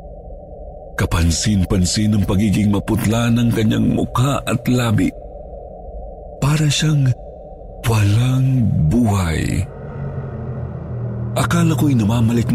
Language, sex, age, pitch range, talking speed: Filipino, male, 50-69, 100-145 Hz, 75 wpm